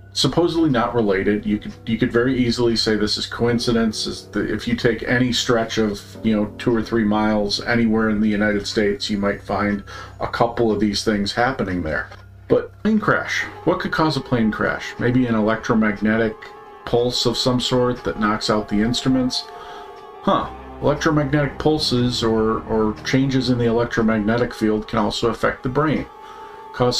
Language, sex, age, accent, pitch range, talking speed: English, male, 40-59, American, 105-125 Hz, 175 wpm